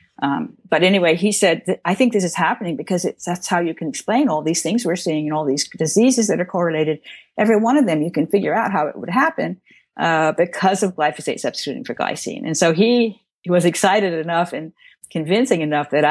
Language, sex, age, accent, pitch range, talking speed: English, female, 50-69, American, 150-185 Hz, 225 wpm